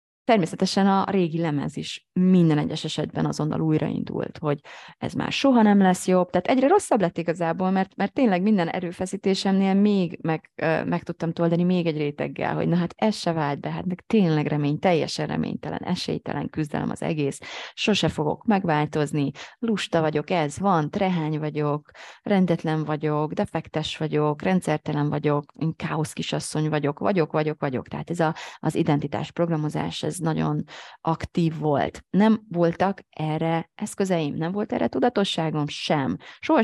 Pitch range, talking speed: 155-190 Hz, 155 wpm